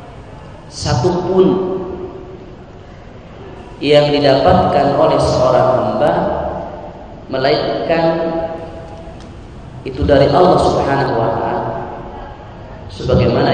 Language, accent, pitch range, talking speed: Indonesian, native, 115-135 Hz, 60 wpm